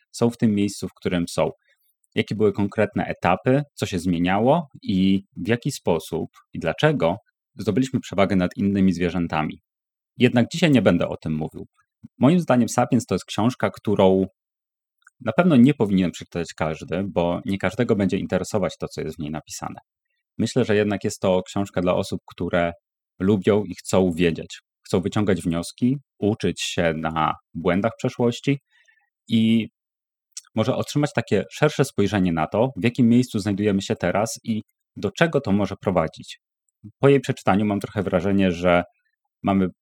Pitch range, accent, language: 90-120 Hz, native, Polish